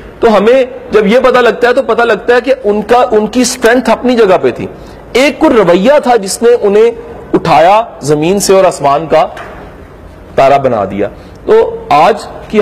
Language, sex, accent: English, male, Indian